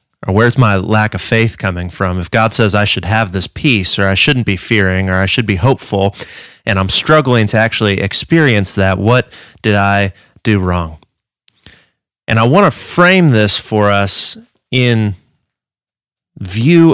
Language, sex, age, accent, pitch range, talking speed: English, male, 30-49, American, 95-125 Hz, 170 wpm